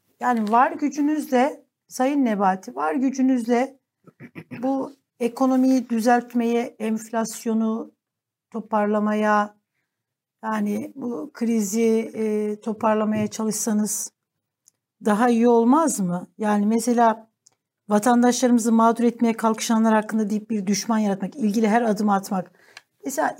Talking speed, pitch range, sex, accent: 95 wpm, 205-250 Hz, female, native